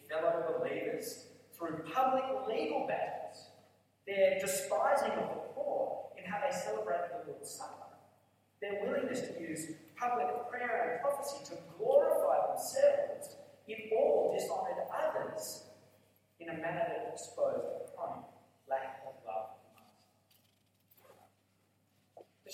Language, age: English, 30-49